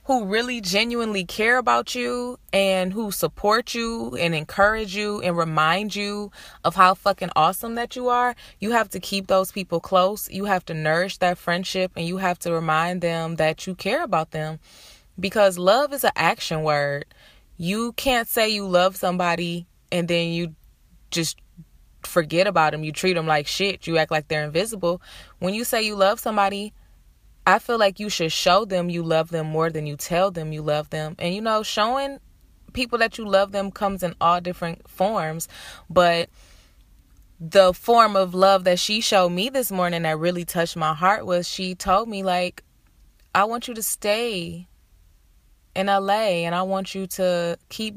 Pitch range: 165-205 Hz